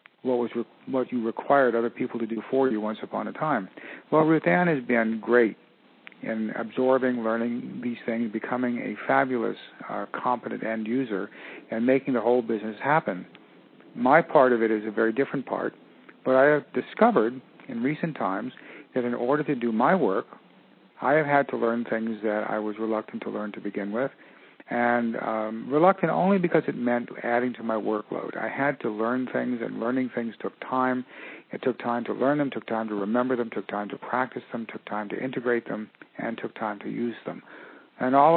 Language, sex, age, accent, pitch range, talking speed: English, male, 50-69, American, 115-135 Hz, 195 wpm